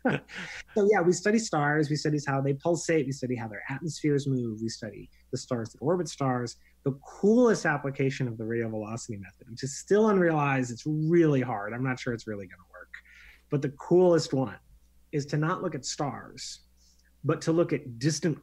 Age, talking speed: 30-49, 200 wpm